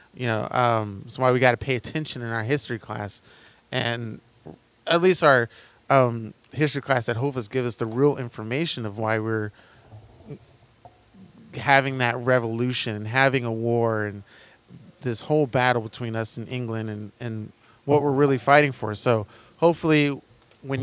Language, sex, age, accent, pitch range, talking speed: English, male, 20-39, American, 115-140 Hz, 165 wpm